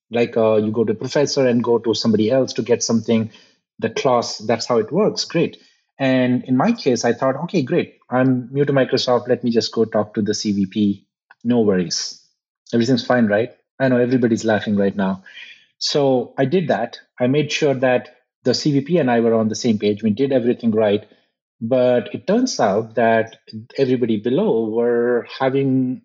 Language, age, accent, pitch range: English, 30-49, Indian, 115-135 Hz